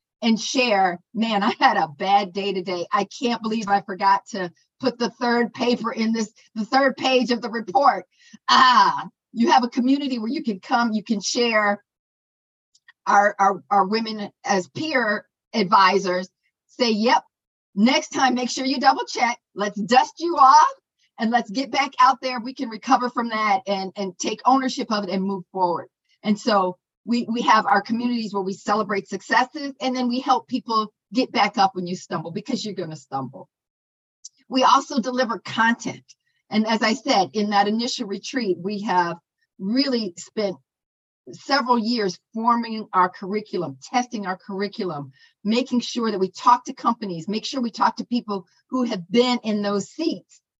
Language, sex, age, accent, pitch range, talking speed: English, female, 50-69, American, 195-250 Hz, 175 wpm